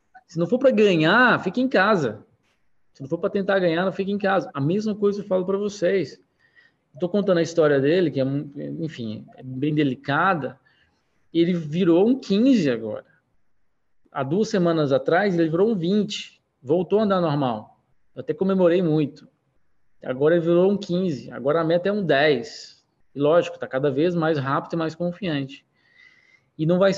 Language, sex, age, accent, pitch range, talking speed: Portuguese, male, 20-39, Brazilian, 140-190 Hz, 175 wpm